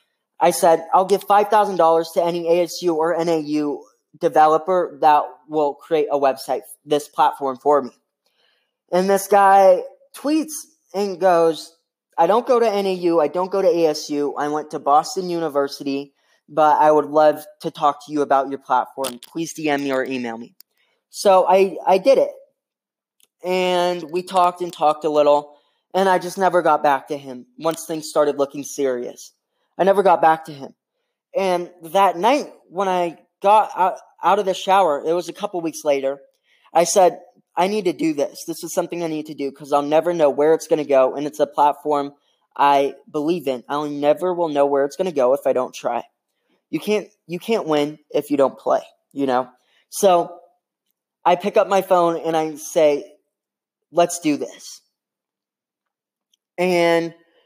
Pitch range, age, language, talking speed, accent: 145-185 Hz, 20-39, English, 180 wpm, American